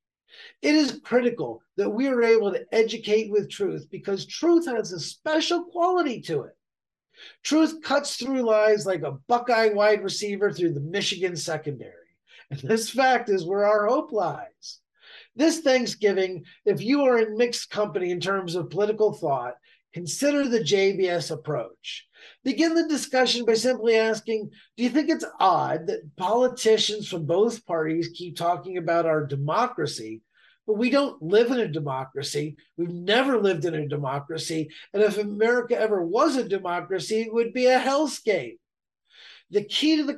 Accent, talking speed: American, 160 wpm